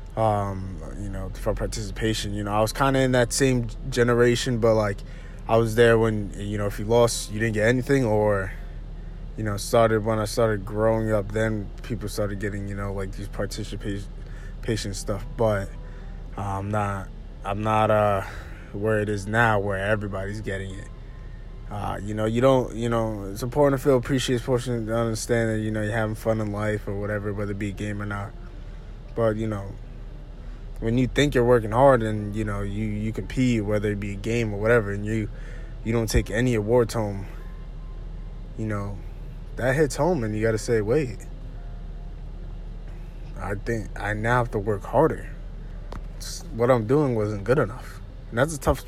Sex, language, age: male, English, 20-39